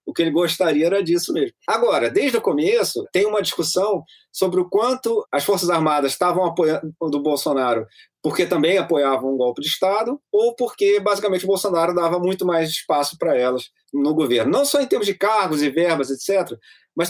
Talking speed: 190 wpm